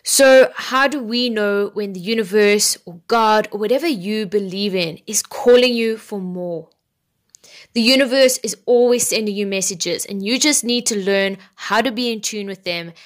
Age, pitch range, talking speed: 10-29, 195-235 Hz, 185 wpm